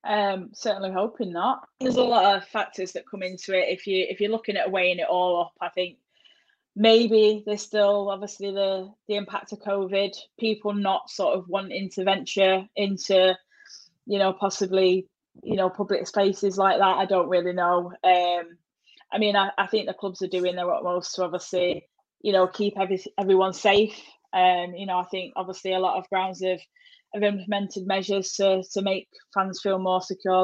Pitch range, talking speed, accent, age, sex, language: 185-205 Hz, 195 wpm, British, 10-29, female, English